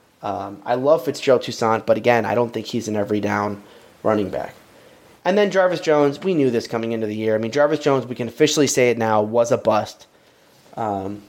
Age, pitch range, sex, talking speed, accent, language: 20-39, 125-160 Hz, male, 220 wpm, American, English